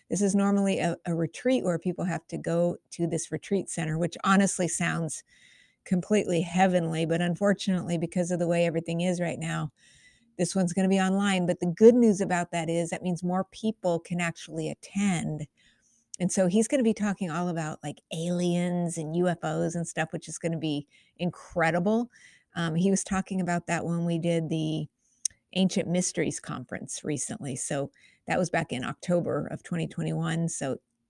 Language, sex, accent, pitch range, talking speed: English, female, American, 170-200 Hz, 180 wpm